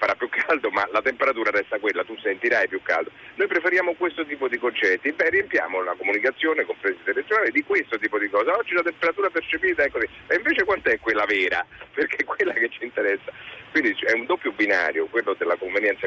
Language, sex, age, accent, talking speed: Italian, male, 40-59, native, 200 wpm